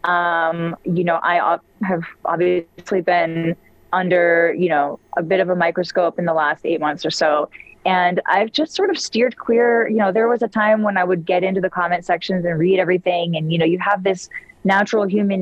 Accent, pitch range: American, 175-210 Hz